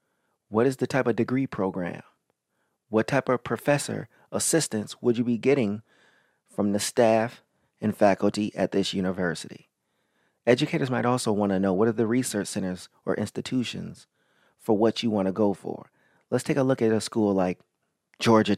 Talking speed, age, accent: 170 wpm, 30-49, American